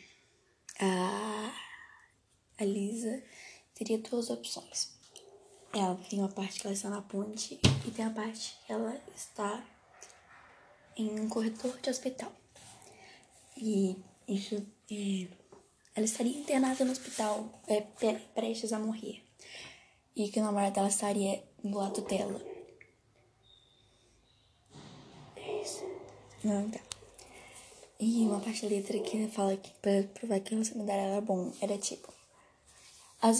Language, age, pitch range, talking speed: Portuguese, 10-29, 200-230 Hz, 130 wpm